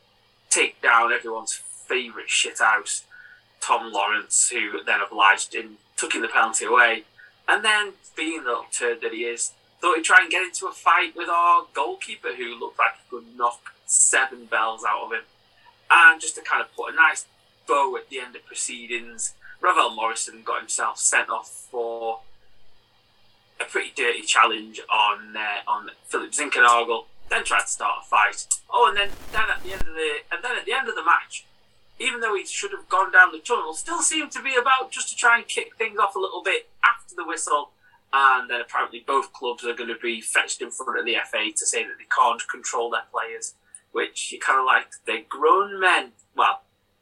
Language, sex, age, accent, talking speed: English, male, 20-39, British, 205 wpm